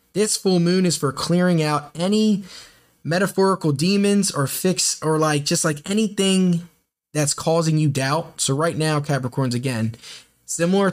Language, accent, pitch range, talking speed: English, American, 125-160 Hz, 150 wpm